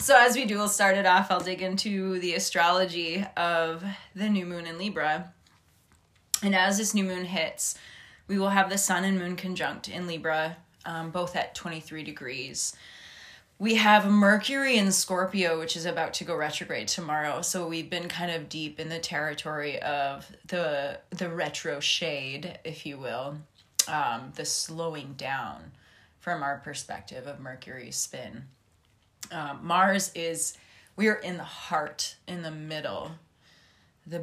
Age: 20-39